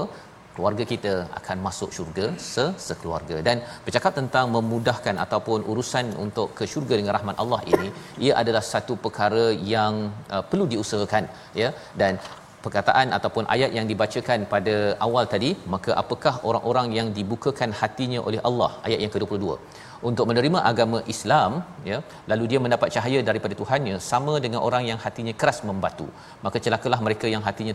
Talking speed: 150 wpm